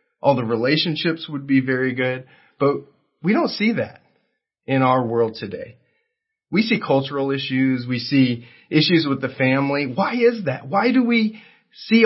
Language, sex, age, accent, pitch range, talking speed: English, male, 30-49, American, 130-180 Hz, 165 wpm